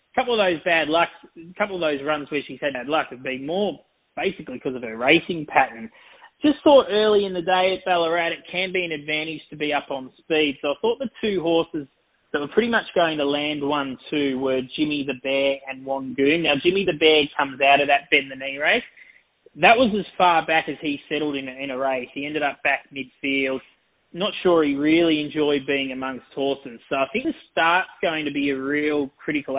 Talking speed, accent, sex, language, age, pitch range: 230 wpm, Australian, male, English, 20-39, 135-165 Hz